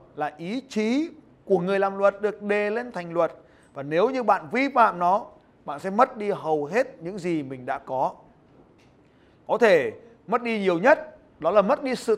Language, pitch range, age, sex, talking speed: Vietnamese, 170-230 Hz, 30-49, male, 200 wpm